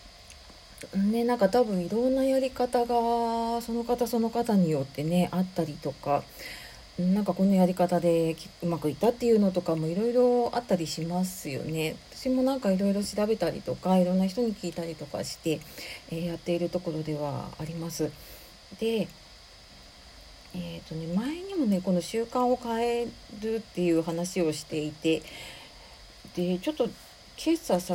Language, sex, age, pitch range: Japanese, female, 40-59, 170-245 Hz